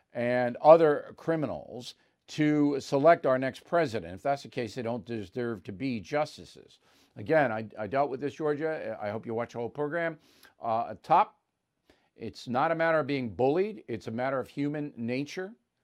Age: 50-69